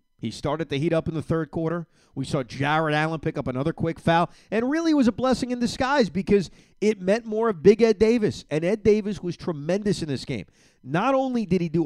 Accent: American